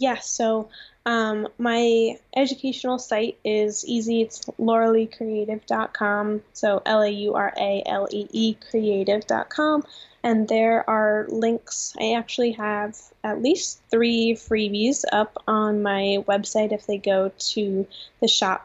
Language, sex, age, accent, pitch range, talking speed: English, female, 10-29, American, 210-230 Hz, 115 wpm